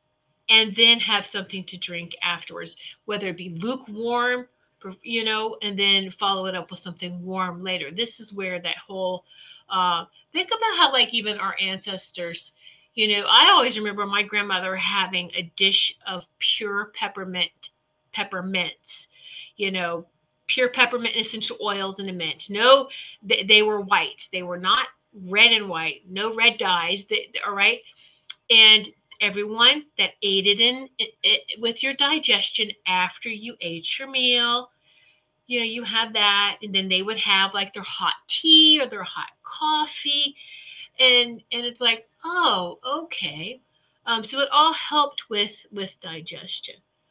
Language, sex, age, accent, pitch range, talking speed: English, female, 40-59, American, 185-235 Hz, 155 wpm